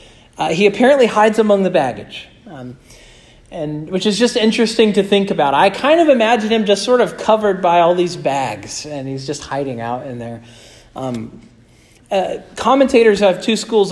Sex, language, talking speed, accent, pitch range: male, English, 180 wpm, American, 165-215 Hz